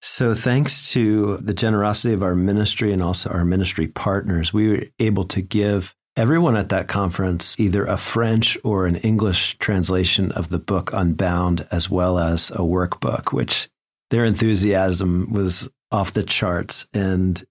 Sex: male